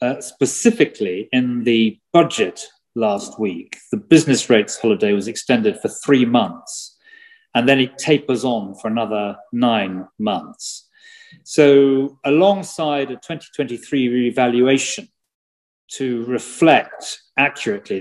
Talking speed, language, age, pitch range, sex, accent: 110 wpm, English, 40-59, 120-155 Hz, male, British